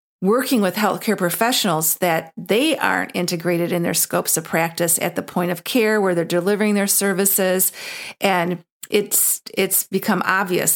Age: 40-59